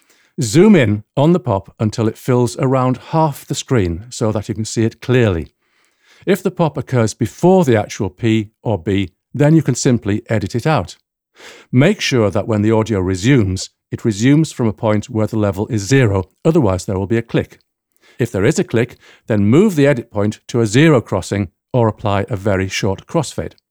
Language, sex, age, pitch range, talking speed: English, male, 50-69, 105-130 Hz, 200 wpm